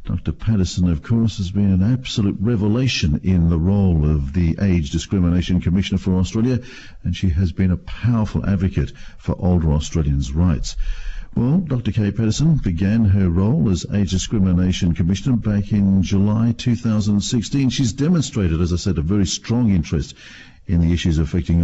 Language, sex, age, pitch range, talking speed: English, male, 50-69, 90-115 Hz, 160 wpm